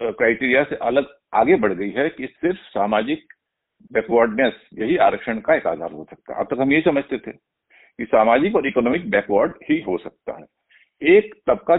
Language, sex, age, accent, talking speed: Hindi, male, 50-69, native, 175 wpm